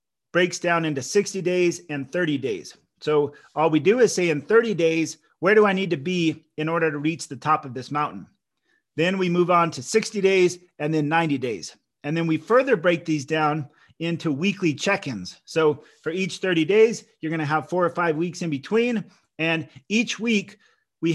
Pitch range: 155-190 Hz